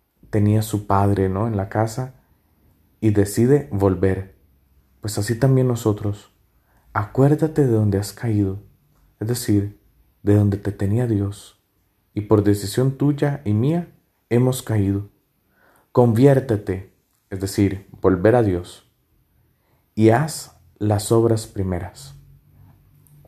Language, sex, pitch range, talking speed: Spanish, male, 95-115 Hz, 115 wpm